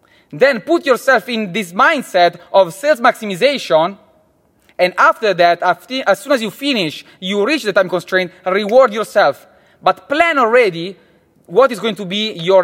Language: English